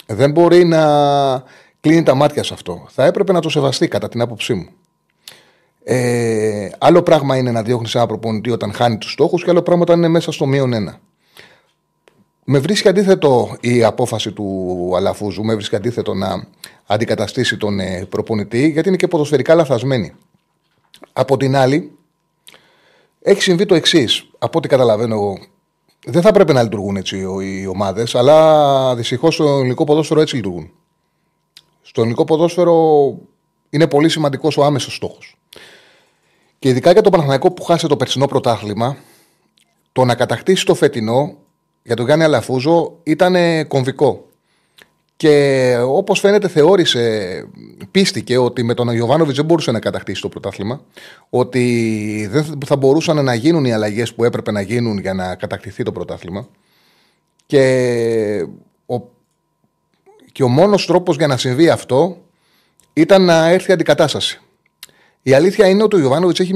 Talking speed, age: 150 wpm, 30-49